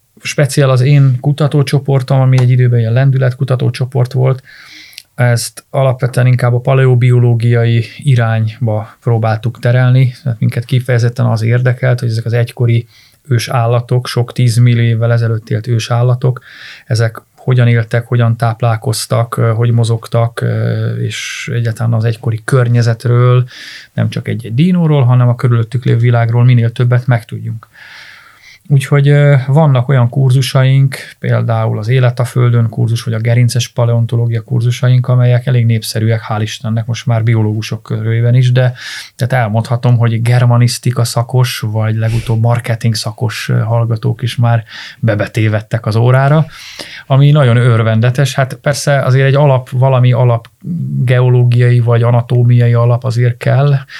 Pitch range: 115-130 Hz